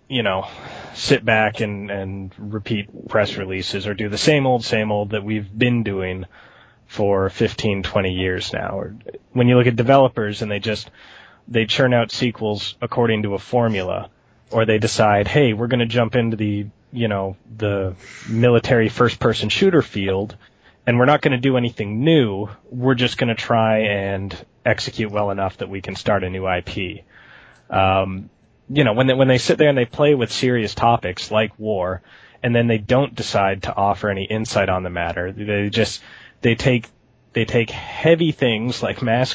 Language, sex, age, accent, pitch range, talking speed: English, male, 20-39, American, 100-120 Hz, 190 wpm